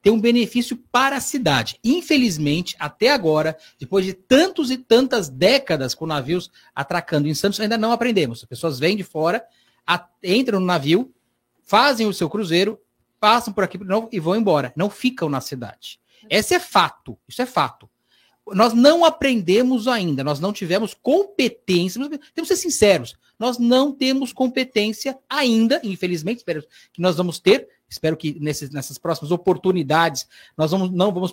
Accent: Brazilian